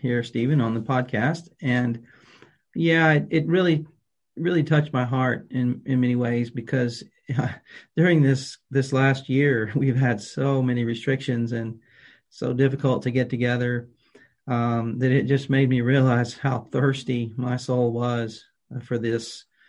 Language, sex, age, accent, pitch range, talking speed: English, male, 40-59, American, 120-140 Hz, 150 wpm